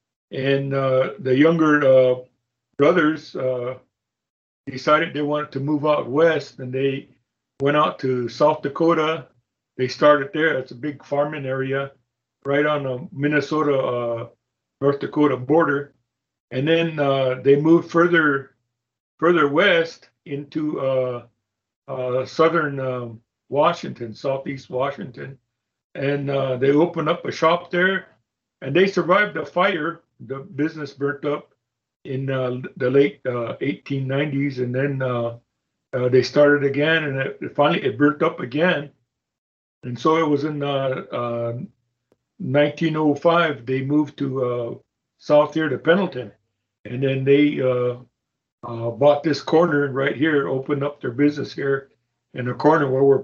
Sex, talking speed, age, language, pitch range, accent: male, 145 wpm, 60-79, English, 125-150 Hz, American